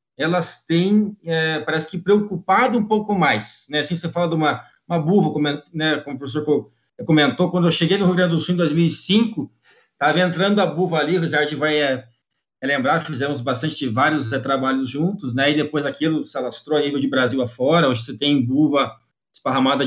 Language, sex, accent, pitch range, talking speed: Portuguese, male, Brazilian, 150-200 Hz, 200 wpm